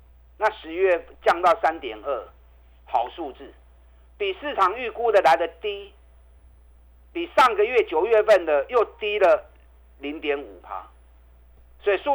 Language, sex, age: Chinese, male, 50-69